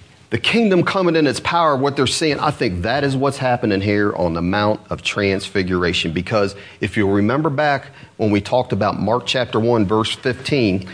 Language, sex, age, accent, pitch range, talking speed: English, male, 40-59, American, 110-155 Hz, 190 wpm